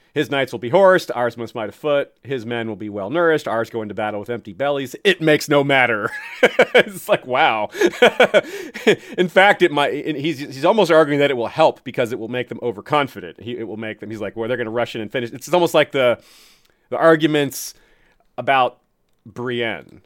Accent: American